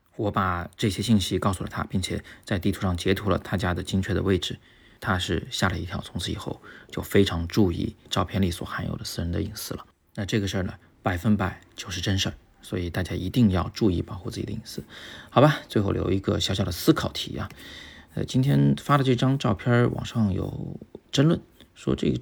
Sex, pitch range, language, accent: male, 90-110 Hz, Chinese, native